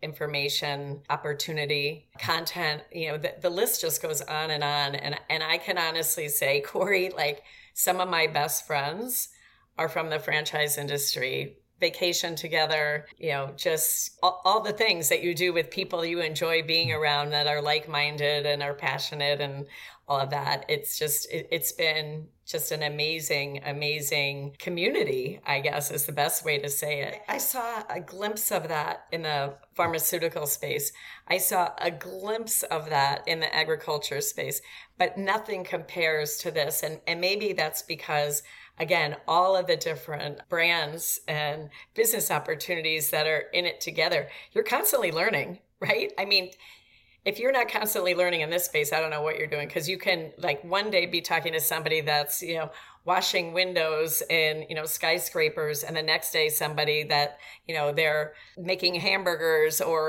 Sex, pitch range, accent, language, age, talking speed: female, 150-185 Hz, American, English, 40-59, 170 wpm